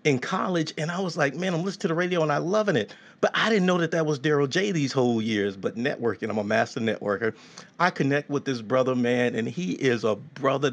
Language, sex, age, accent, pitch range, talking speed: English, male, 40-59, American, 125-185 Hz, 250 wpm